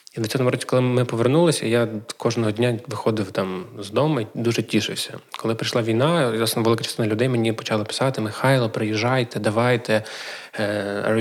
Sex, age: male, 20-39